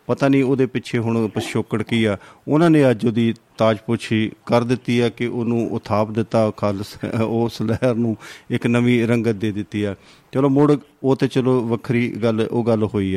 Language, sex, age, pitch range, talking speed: Punjabi, male, 40-59, 105-120 Hz, 180 wpm